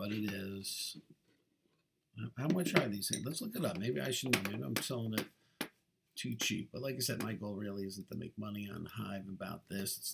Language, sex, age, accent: English, male, 50-69, American